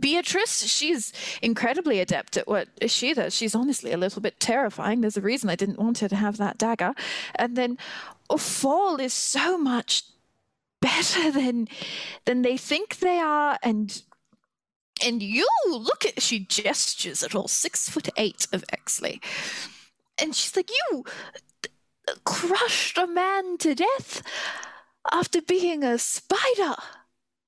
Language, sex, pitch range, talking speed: English, female, 220-295 Hz, 145 wpm